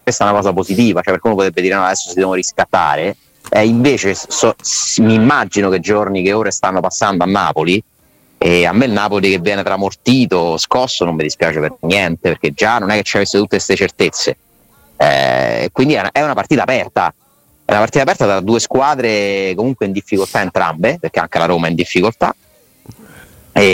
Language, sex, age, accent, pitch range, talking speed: Italian, male, 30-49, native, 85-105 Hz, 205 wpm